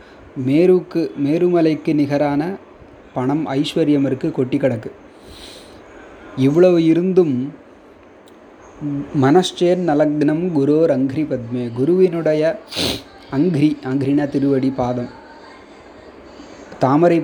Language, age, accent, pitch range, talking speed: Tamil, 30-49, native, 130-155 Hz, 75 wpm